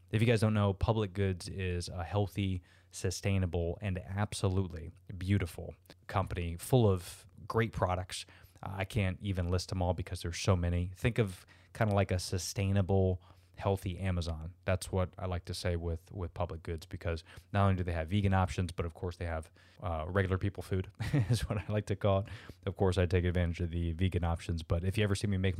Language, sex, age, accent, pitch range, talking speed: English, male, 20-39, American, 90-100 Hz, 205 wpm